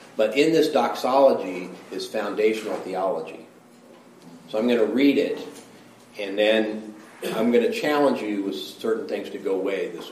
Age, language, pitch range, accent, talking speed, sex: 40-59, English, 110-155 Hz, American, 160 wpm, male